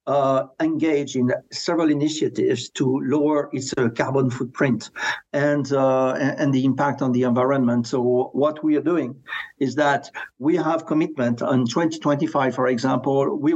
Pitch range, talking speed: 130-170 Hz, 150 wpm